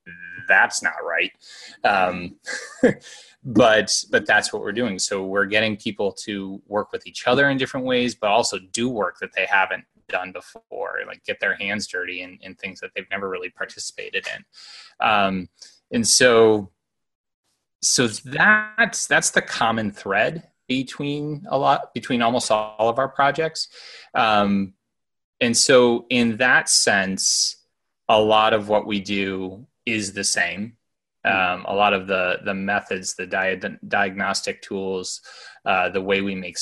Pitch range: 95-125 Hz